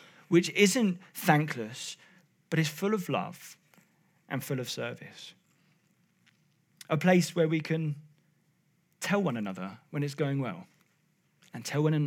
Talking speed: 125 wpm